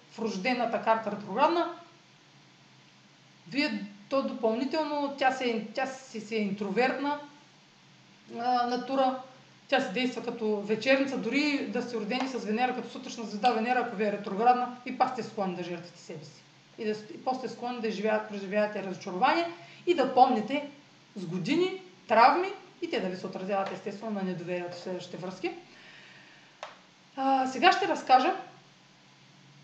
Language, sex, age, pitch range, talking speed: Bulgarian, female, 30-49, 210-265 Hz, 140 wpm